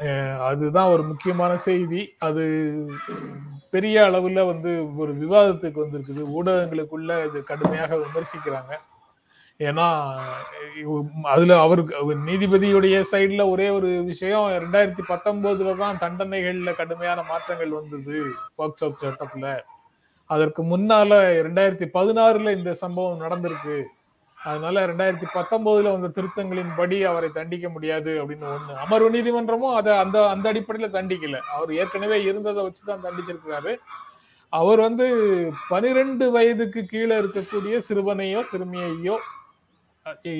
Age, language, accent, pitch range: 30-49, Tamil, native, 155-200 Hz